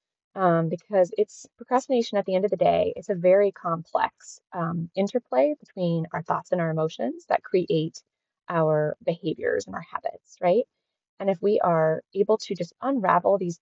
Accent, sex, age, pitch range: American, female, 20-39, 170-205 Hz